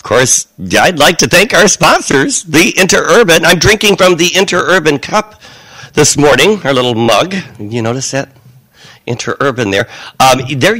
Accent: American